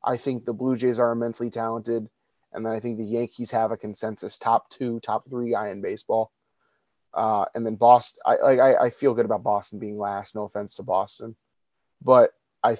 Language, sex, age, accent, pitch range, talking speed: English, male, 30-49, American, 115-140 Hz, 200 wpm